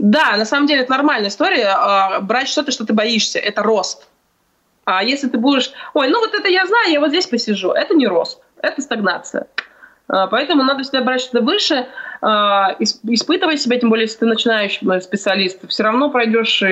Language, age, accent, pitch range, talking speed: Russian, 20-39, native, 210-290 Hz, 180 wpm